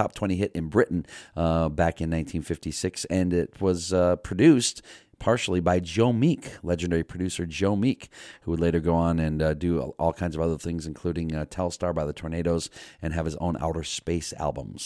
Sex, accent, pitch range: male, American, 80-100 Hz